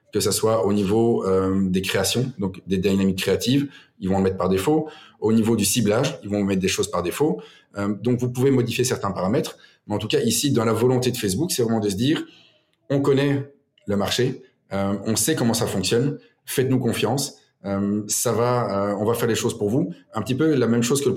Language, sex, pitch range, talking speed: French, male, 100-120 Hz, 230 wpm